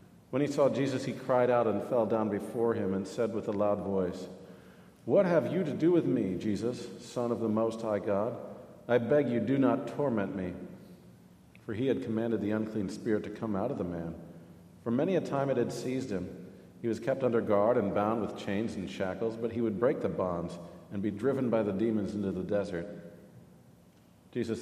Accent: American